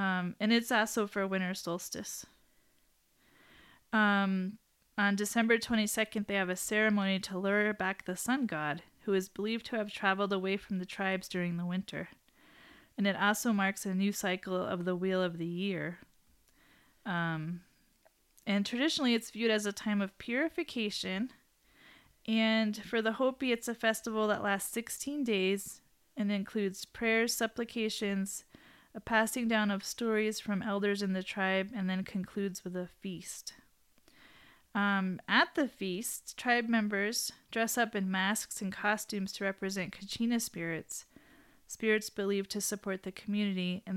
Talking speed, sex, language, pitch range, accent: 150 wpm, female, English, 190-225 Hz, American